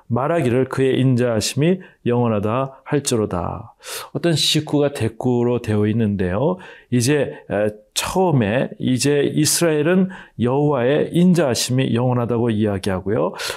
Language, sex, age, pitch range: Korean, male, 40-59, 115-150 Hz